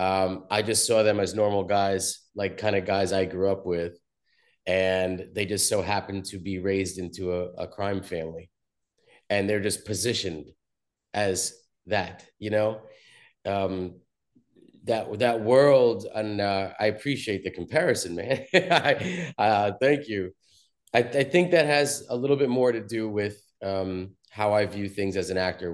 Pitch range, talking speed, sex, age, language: 90-105 Hz, 165 wpm, male, 30-49, English